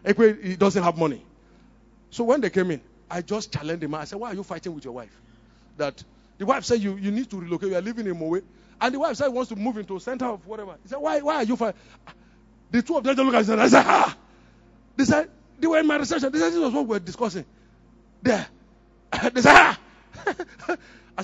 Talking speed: 250 wpm